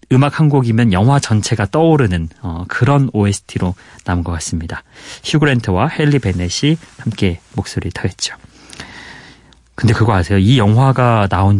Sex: male